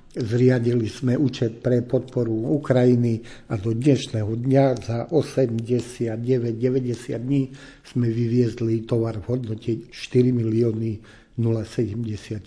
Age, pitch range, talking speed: 60-79, 115-130 Hz, 100 wpm